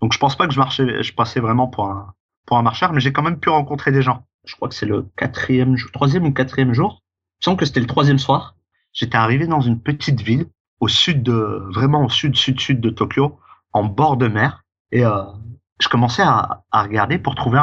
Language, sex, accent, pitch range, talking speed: French, male, French, 105-135 Hz, 235 wpm